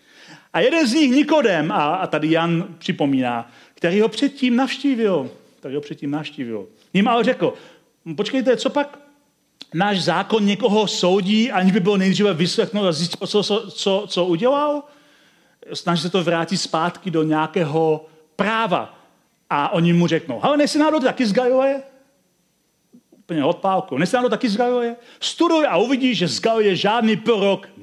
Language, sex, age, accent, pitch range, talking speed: Czech, male, 40-59, native, 150-235 Hz, 155 wpm